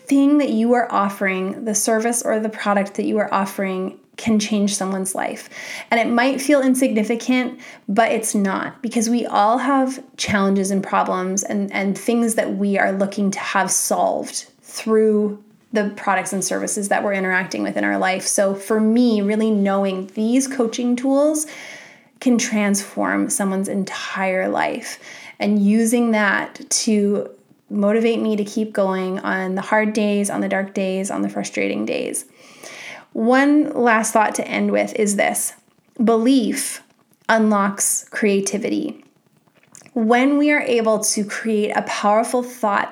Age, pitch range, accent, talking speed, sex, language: 20-39, 200-245 Hz, American, 150 wpm, female, English